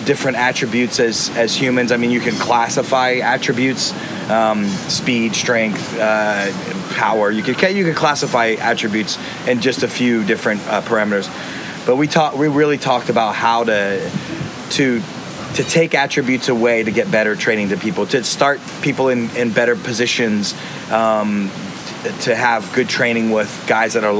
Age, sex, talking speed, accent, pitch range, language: 30-49, male, 160 wpm, American, 110-135 Hz, English